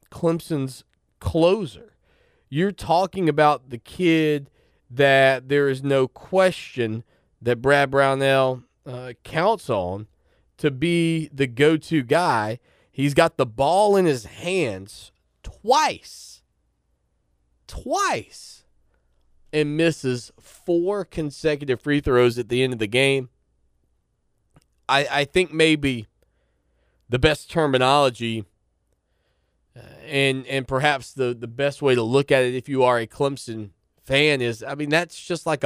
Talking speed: 125 wpm